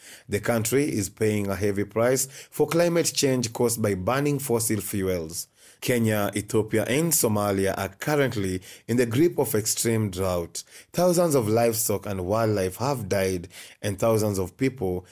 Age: 30-49